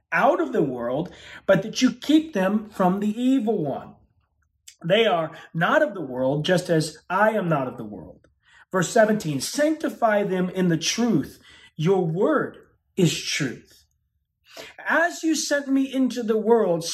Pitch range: 165-225 Hz